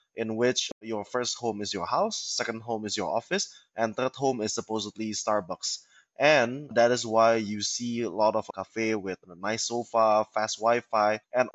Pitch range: 105-120 Hz